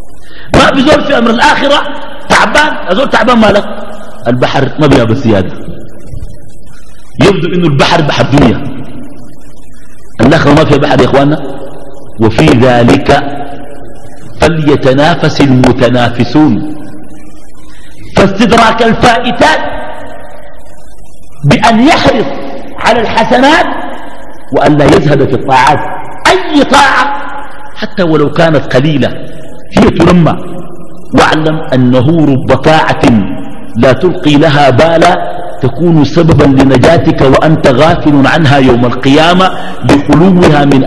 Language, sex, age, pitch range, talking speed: Arabic, male, 50-69, 135-180 Hz, 90 wpm